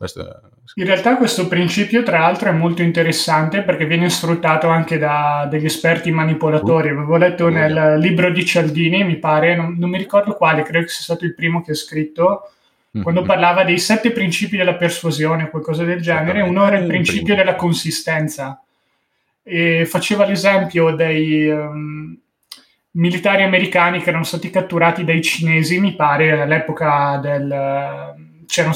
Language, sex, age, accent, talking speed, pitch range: Italian, male, 20-39, native, 155 wpm, 160-190 Hz